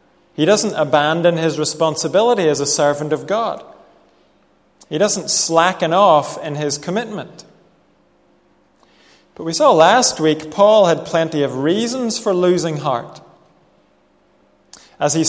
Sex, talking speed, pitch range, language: male, 125 wpm, 145-185 Hz, English